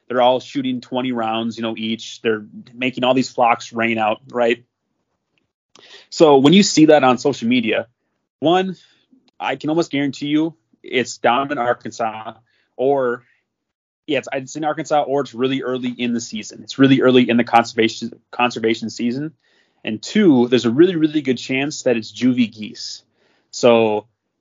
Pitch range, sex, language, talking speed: 115-140 Hz, male, English, 165 wpm